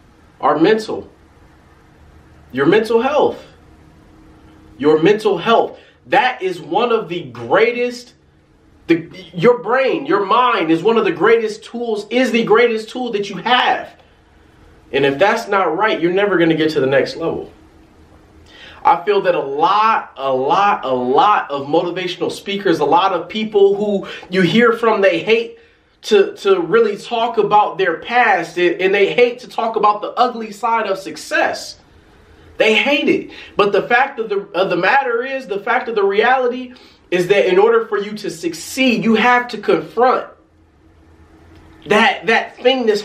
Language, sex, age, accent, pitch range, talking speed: English, male, 30-49, American, 175-265 Hz, 165 wpm